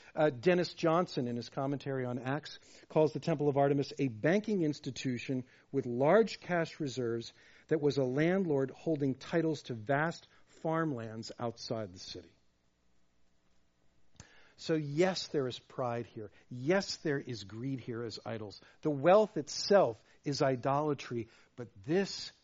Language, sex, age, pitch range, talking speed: English, male, 50-69, 120-170 Hz, 140 wpm